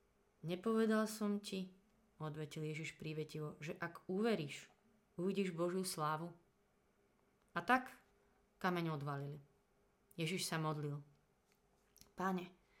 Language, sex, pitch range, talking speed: Slovak, female, 155-200 Hz, 95 wpm